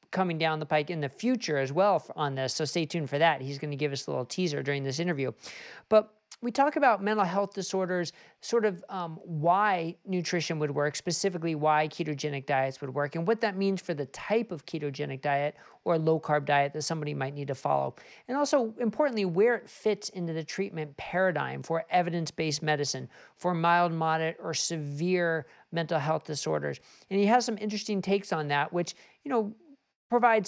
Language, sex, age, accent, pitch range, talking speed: English, male, 50-69, American, 150-195 Hz, 195 wpm